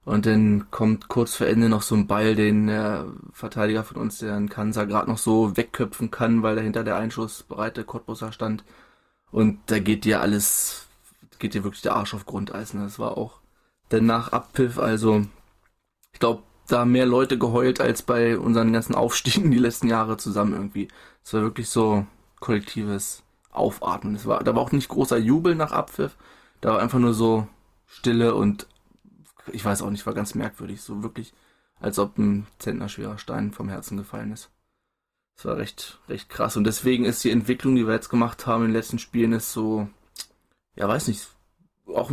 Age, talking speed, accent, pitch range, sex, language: 20-39, 185 wpm, German, 105-125 Hz, male, German